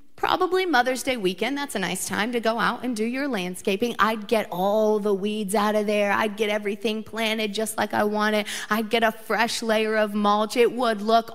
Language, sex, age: English, female, 40-59